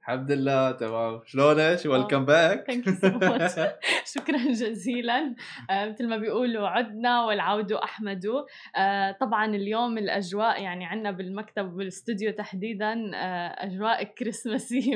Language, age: Arabic, 20-39